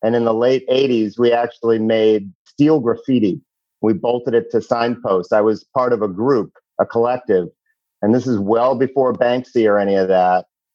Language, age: English, 50-69